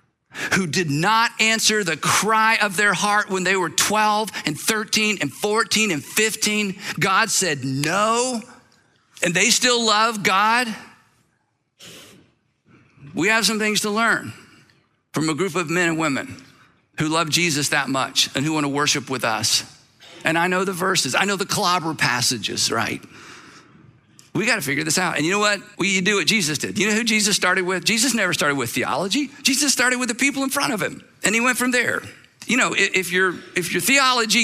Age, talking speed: 50-69, 190 wpm